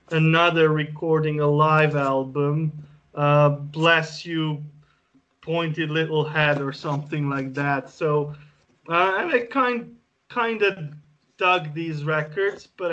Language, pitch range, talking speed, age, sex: English, 145-165 Hz, 120 wpm, 20-39, male